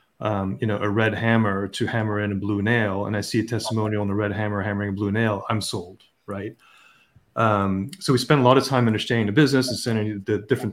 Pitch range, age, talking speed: 105-120 Hz, 30-49, 240 wpm